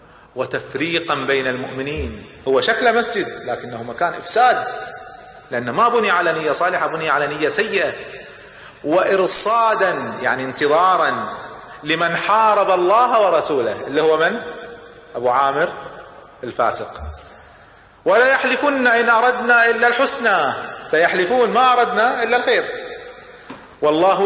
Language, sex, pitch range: Arabic, male, 170-240 Hz